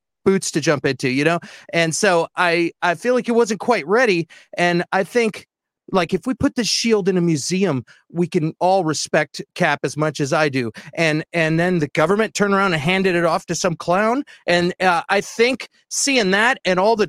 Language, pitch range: English, 160-195 Hz